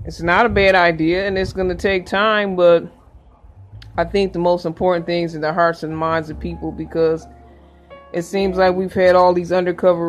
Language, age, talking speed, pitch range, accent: English, 20-39, 200 wpm, 160-180 Hz, American